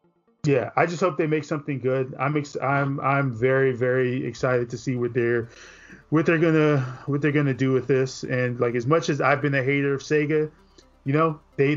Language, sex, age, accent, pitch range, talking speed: English, male, 20-39, American, 125-150 Hz, 225 wpm